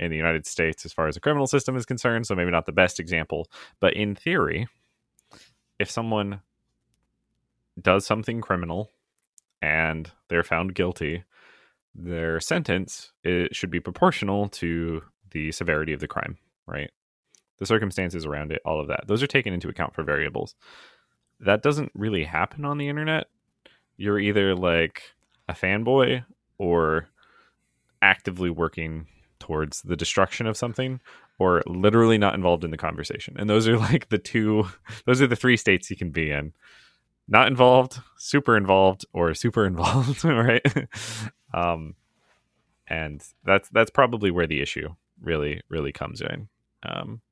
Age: 30-49